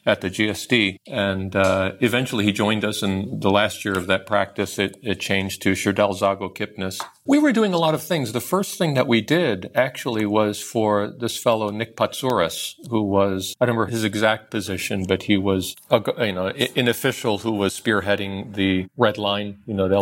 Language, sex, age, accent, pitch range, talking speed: English, male, 50-69, American, 95-110 Hz, 200 wpm